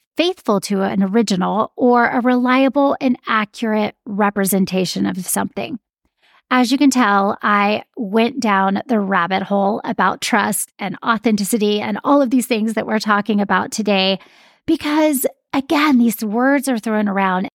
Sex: female